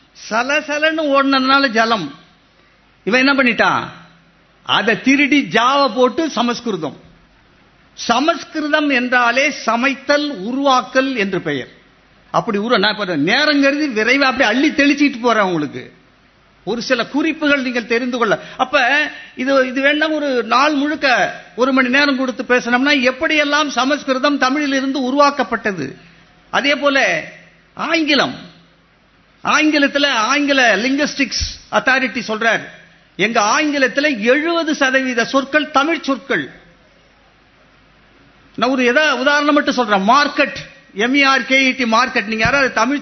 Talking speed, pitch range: 80 wpm, 235-290 Hz